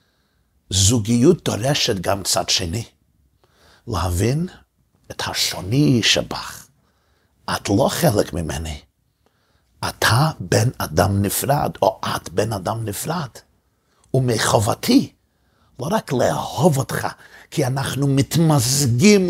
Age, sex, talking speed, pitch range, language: 50-69, male, 95 wpm, 100-140 Hz, Hebrew